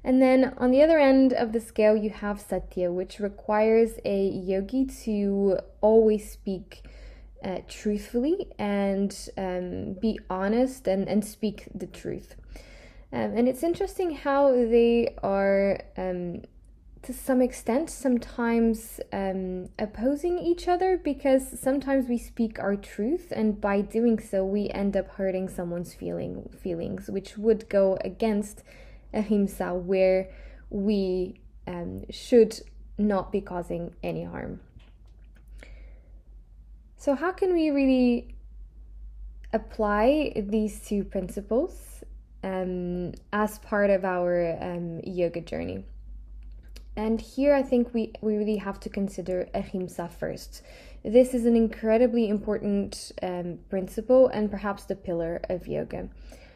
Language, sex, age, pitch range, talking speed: English, female, 10-29, 185-235 Hz, 125 wpm